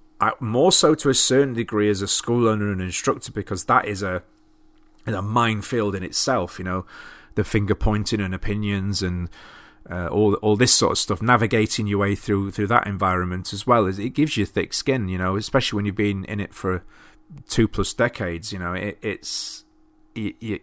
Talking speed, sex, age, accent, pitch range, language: 200 wpm, male, 30-49, British, 100-135 Hz, English